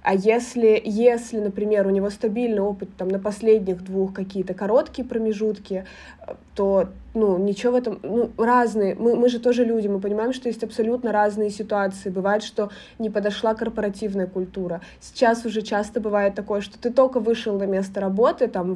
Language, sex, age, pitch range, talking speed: Russian, female, 20-39, 190-225 Hz, 170 wpm